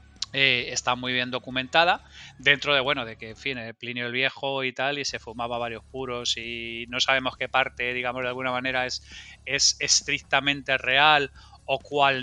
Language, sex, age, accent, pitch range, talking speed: Spanish, male, 30-49, Spanish, 125-180 Hz, 185 wpm